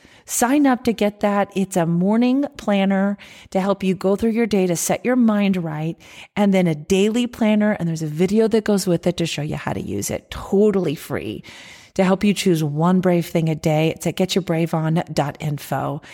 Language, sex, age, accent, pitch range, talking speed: English, female, 40-59, American, 165-210 Hz, 205 wpm